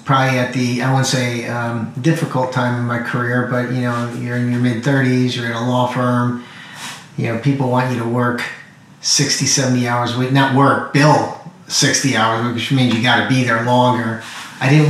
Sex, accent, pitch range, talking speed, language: male, American, 120-145 Hz, 215 wpm, English